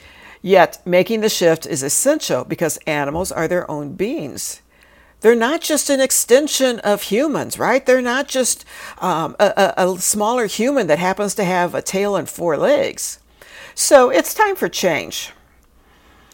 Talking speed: 155 wpm